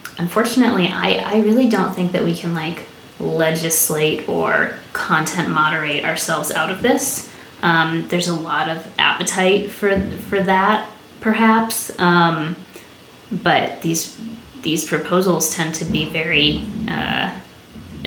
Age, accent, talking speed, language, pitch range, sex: 20-39, American, 125 wpm, English, 160-195 Hz, female